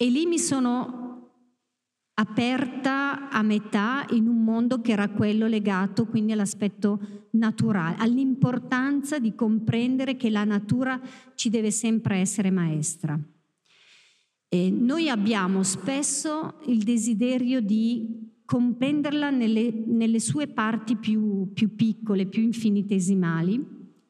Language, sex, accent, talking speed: Italian, female, native, 110 wpm